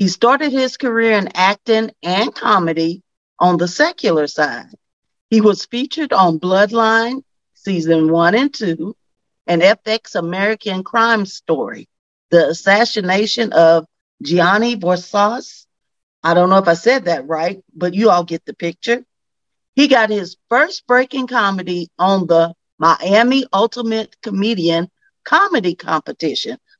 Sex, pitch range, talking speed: female, 170-235 Hz, 130 wpm